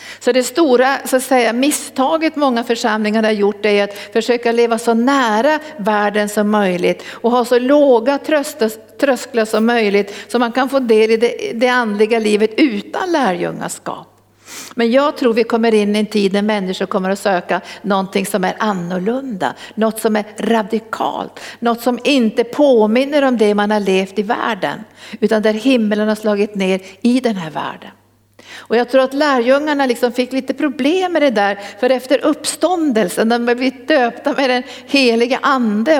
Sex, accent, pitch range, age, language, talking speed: female, native, 215-260 Hz, 60-79, Swedish, 170 wpm